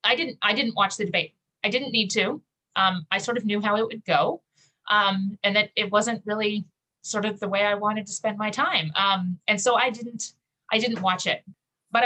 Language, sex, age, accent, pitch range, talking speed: English, female, 30-49, American, 170-215 Hz, 230 wpm